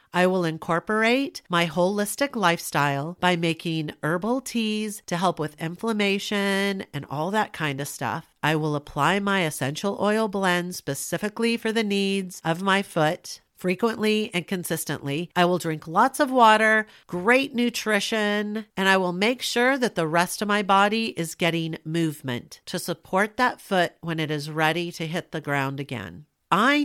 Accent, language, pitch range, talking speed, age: American, English, 150-205 Hz, 165 wpm, 50-69